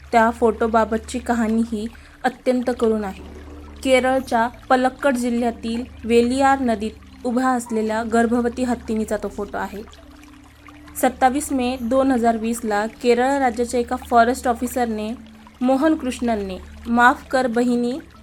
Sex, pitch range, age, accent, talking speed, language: female, 220-255 Hz, 20-39, native, 105 wpm, Marathi